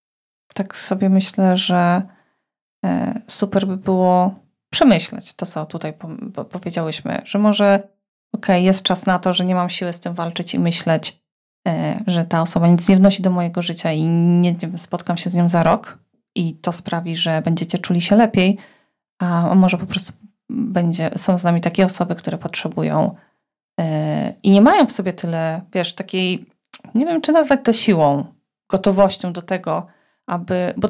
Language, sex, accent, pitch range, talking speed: Polish, female, native, 175-210 Hz, 165 wpm